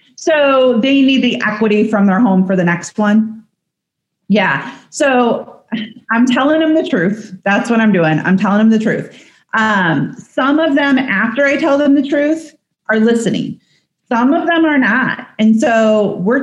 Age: 30-49